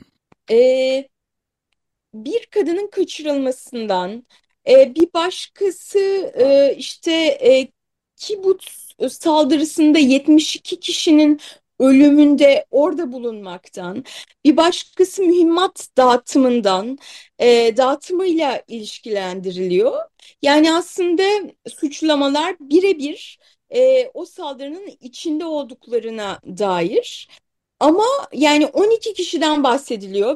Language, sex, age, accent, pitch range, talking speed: Turkish, female, 30-49, native, 265-350 Hz, 75 wpm